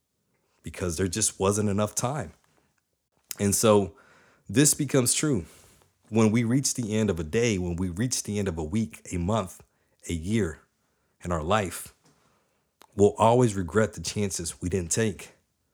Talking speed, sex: 160 wpm, male